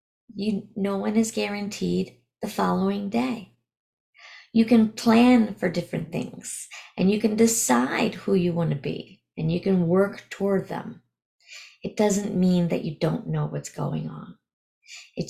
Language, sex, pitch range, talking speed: English, female, 165-230 Hz, 150 wpm